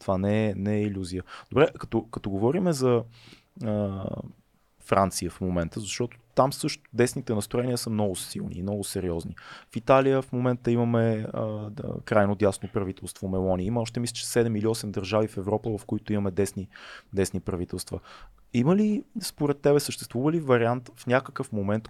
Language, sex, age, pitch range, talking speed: Bulgarian, male, 20-39, 105-135 Hz, 170 wpm